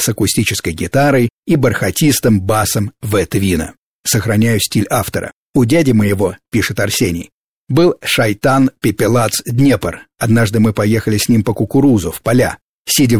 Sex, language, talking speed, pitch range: male, Russian, 135 wpm, 110-135 Hz